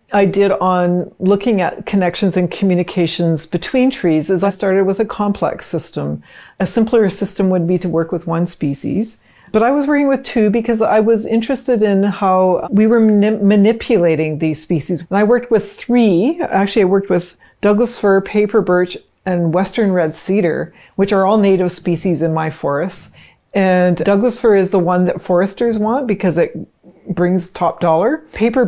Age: 40-59